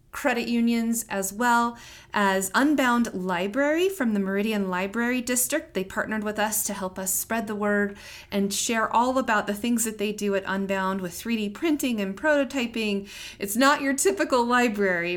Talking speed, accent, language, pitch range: 170 wpm, American, English, 195-250 Hz